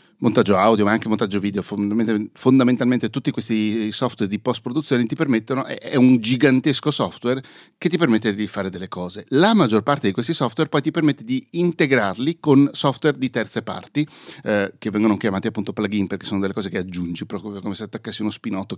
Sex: male